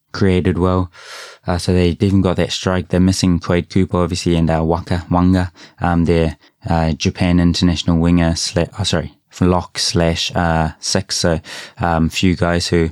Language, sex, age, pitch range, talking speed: English, male, 20-39, 85-95 Hz, 170 wpm